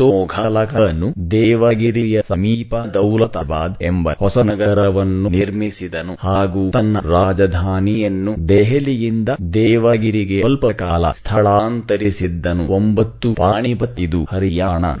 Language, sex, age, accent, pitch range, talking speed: English, male, 30-49, Indian, 90-110 Hz, 115 wpm